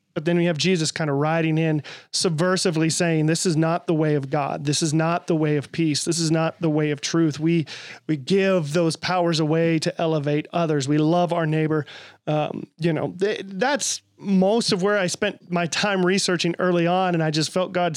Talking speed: 215 wpm